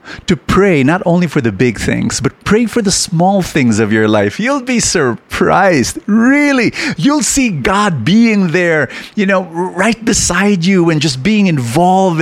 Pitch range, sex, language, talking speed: 120-190 Hz, male, English, 170 wpm